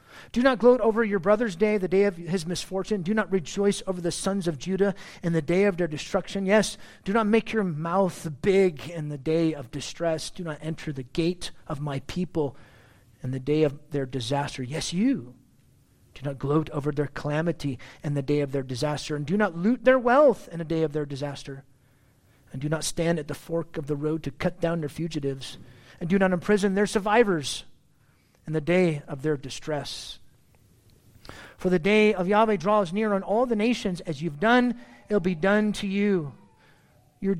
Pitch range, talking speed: 145-195 Hz, 200 wpm